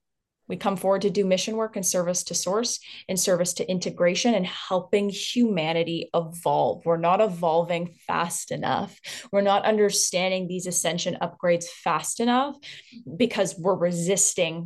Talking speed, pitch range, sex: 145 wpm, 175-220 Hz, female